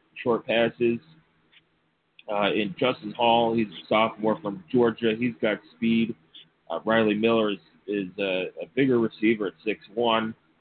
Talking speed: 140 wpm